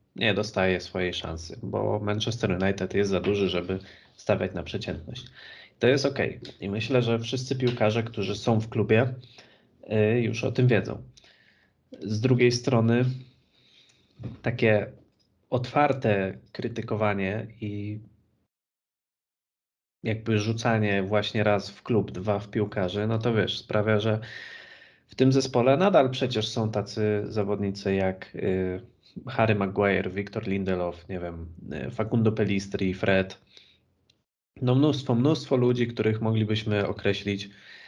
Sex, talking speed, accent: male, 120 wpm, native